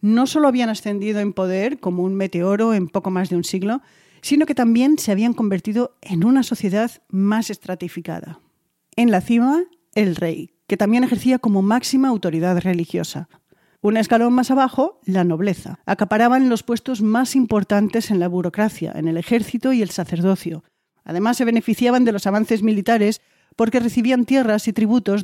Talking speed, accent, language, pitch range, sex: 165 wpm, Spanish, Spanish, 180-240 Hz, female